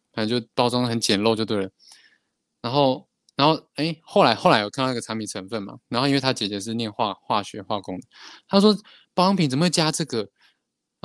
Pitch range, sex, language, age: 100-125 Hz, male, Chinese, 20-39